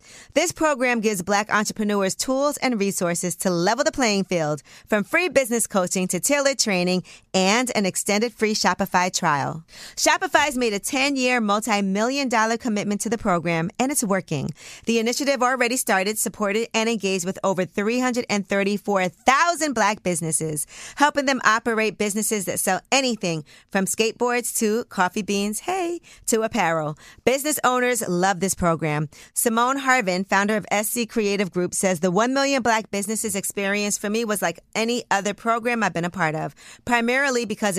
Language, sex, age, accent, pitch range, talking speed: English, female, 40-59, American, 190-245 Hz, 155 wpm